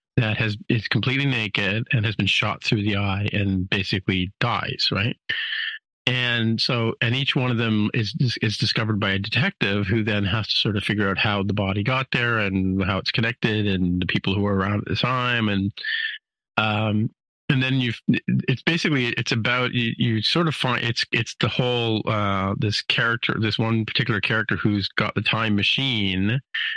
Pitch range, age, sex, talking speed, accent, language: 105-125 Hz, 40-59, male, 190 wpm, American, English